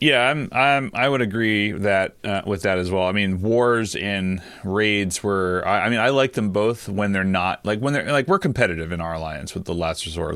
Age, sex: 30-49, male